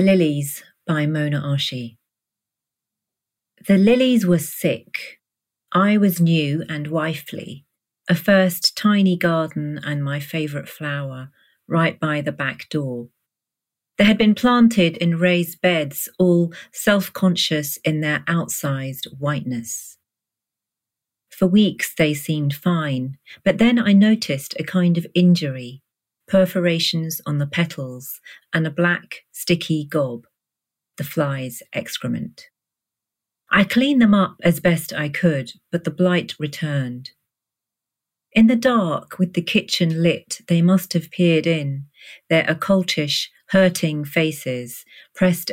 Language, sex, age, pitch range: English, female, 40-59, 145-185 Hz